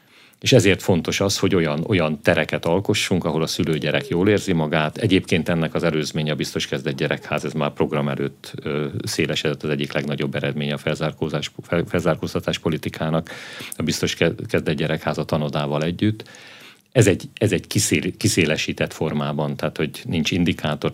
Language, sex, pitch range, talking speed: Hungarian, male, 80-100 Hz, 150 wpm